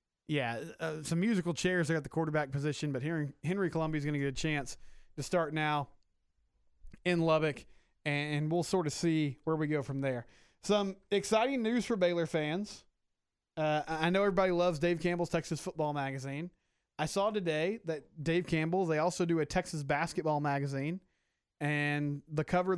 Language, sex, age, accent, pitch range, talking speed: English, male, 20-39, American, 150-175 Hz, 175 wpm